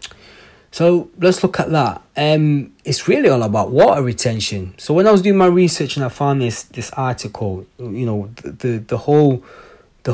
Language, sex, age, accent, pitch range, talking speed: English, male, 20-39, British, 115-150 Hz, 190 wpm